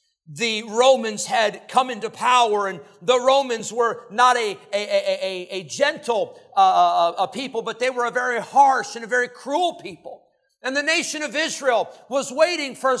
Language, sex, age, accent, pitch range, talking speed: English, male, 50-69, American, 240-320 Hz, 185 wpm